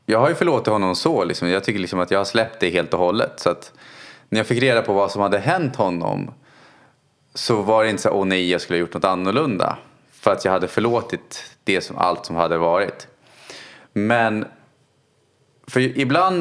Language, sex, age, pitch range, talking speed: Swedish, male, 20-39, 90-130 Hz, 210 wpm